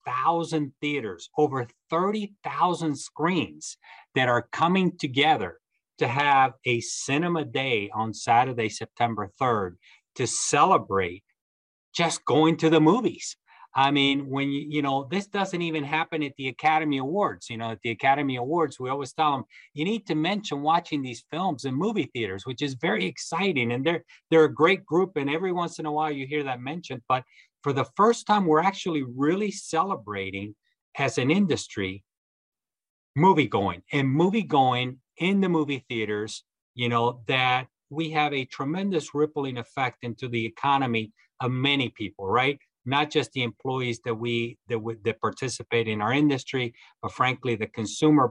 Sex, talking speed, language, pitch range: male, 165 wpm, English, 120-160 Hz